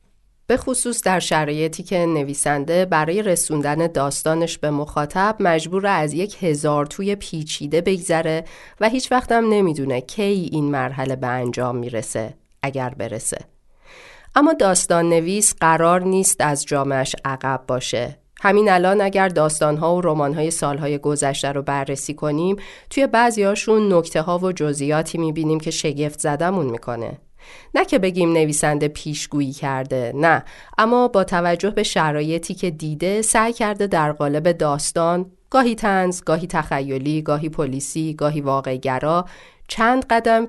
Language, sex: Persian, female